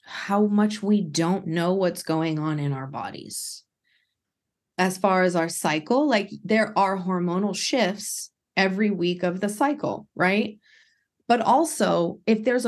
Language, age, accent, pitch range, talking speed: English, 30-49, American, 170-210 Hz, 145 wpm